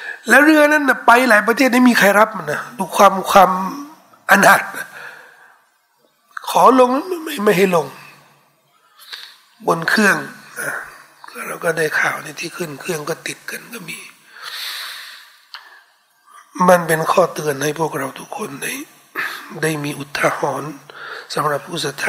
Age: 60-79